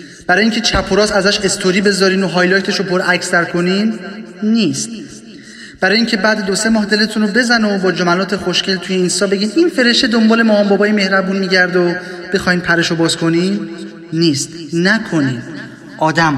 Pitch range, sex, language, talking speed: 170-215 Hz, male, Persian, 160 wpm